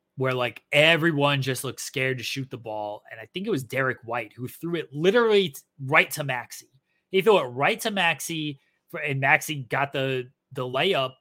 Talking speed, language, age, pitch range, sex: 205 wpm, English, 20-39, 125-155 Hz, male